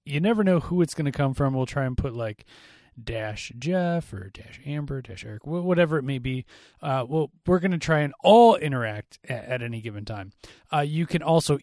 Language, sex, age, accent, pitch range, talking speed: English, male, 30-49, American, 120-170 Hz, 220 wpm